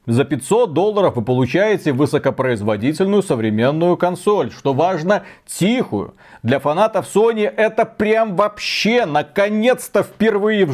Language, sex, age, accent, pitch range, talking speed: Russian, male, 40-59, native, 140-200 Hz, 110 wpm